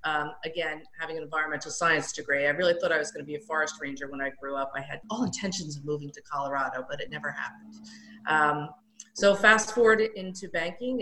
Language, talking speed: English, 220 wpm